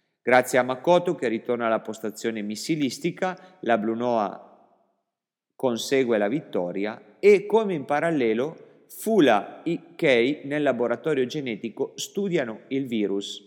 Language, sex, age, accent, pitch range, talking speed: Italian, male, 40-59, native, 110-155 Hz, 115 wpm